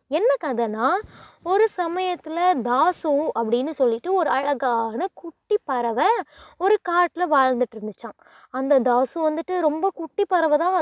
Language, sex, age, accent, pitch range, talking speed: Tamil, female, 20-39, native, 270-360 Hz, 115 wpm